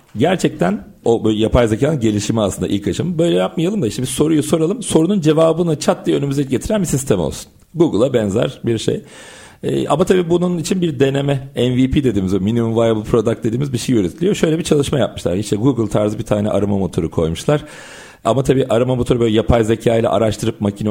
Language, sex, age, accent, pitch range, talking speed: Turkish, male, 40-59, native, 105-140 Hz, 190 wpm